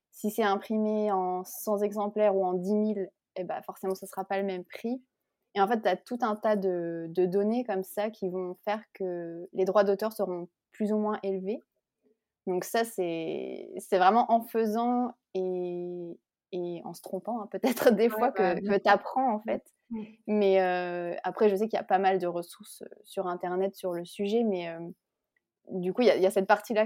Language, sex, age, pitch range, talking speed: French, female, 20-39, 185-215 Hz, 210 wpm